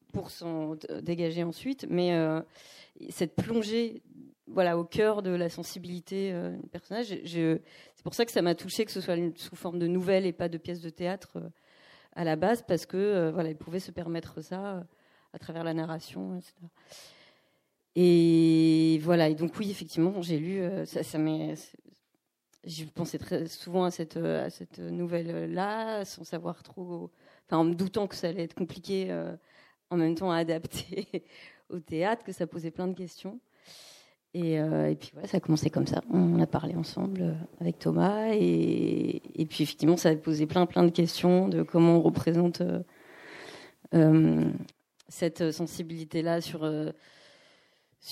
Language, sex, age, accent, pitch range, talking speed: French, female, 40-59, French, 160-185 Hz, 175 wpm